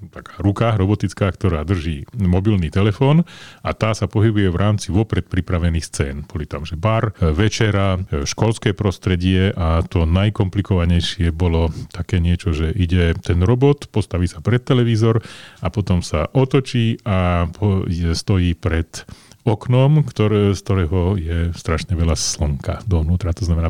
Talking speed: 140 wpm